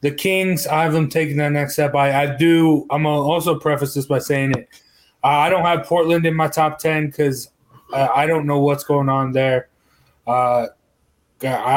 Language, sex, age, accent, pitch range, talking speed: English, male, 20-39, American, 135-160 Hz, 200 wpm